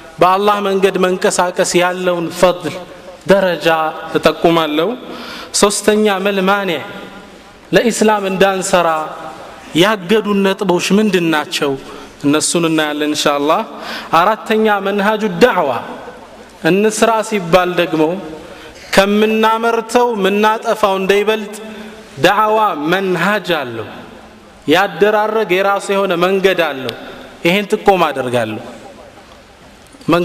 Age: 30-49